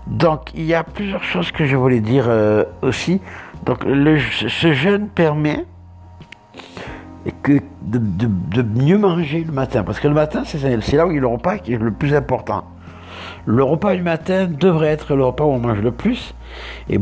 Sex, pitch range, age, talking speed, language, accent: male, 105-160 Hz, 60-79, 200 wpm, French, French